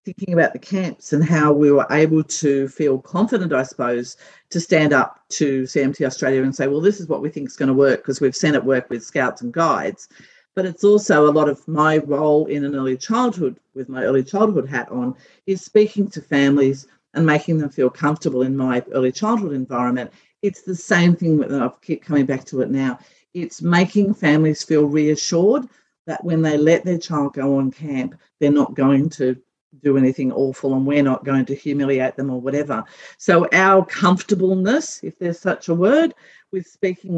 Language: English